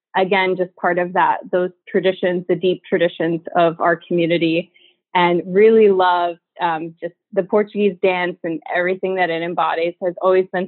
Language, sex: English, female